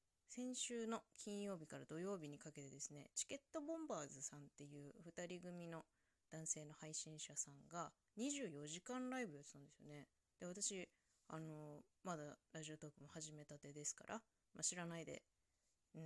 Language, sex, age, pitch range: Japanese, female, 20-39, 145-195 Hz